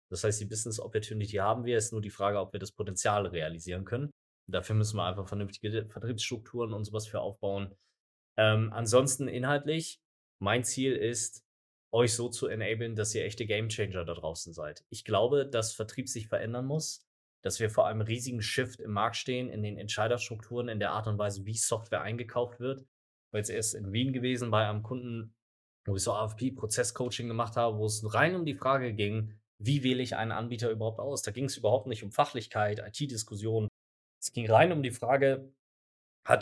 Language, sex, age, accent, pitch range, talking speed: German, male, 20-39, German, 105-125 Hz, 195 wpm